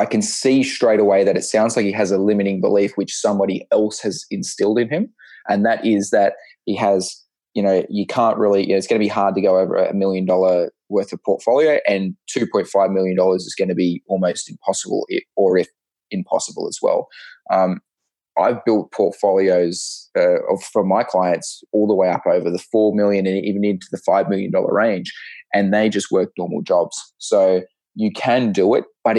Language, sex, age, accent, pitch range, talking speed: English, male, 20-39, Australian, 95-135 Hz, 195 wpm